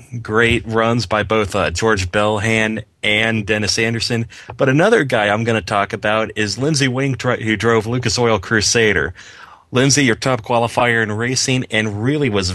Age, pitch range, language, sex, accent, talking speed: 30-49, 105-125 Hz, English, male, American, 165 wpm